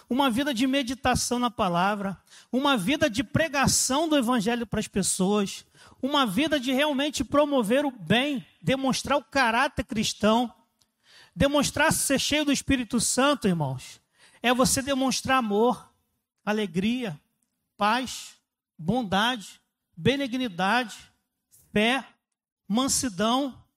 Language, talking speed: Portuguese, 110 wpm